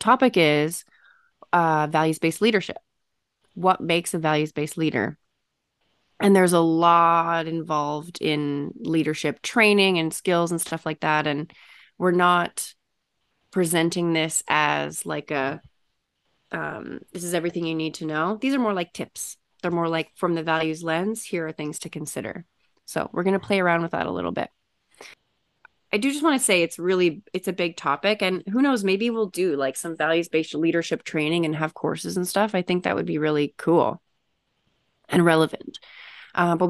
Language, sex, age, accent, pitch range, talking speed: English, female, 20-39, American, 160-195 Hz, 175 wpm